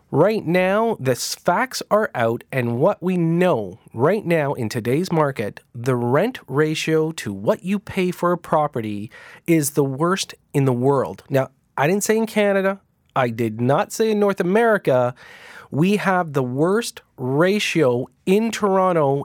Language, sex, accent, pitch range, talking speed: English, male, American, 135-190 Hz, 160 wpm